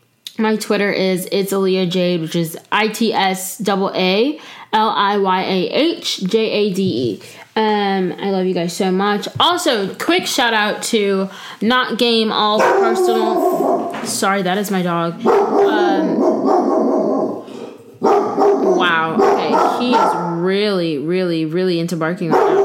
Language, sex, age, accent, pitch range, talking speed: English, female, 10-29, American, 185-230 Hz, 115 wpm